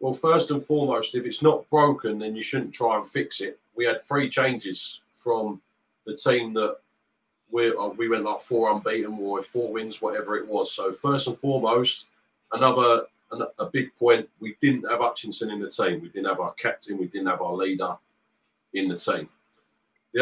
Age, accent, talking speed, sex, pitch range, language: 40-59, British, 190 wpm, male, 115-140 Hz, English